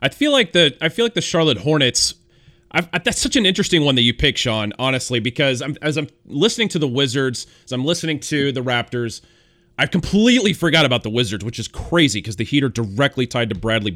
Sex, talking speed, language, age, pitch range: male, 230 wpm, English, 30-49, 115-160 Hz